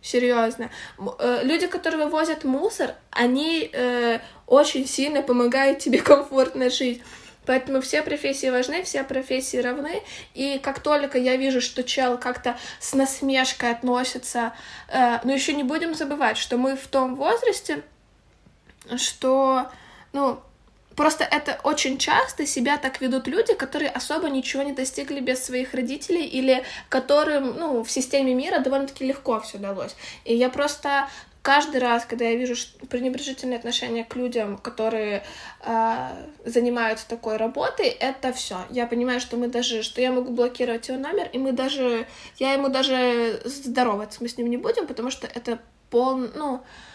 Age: 20-39